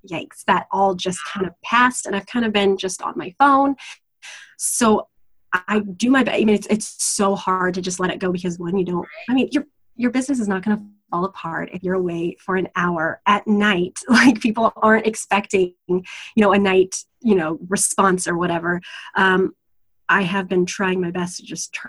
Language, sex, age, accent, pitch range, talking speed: English, female, 20-39, American, 180-215 Hz, 210 wpm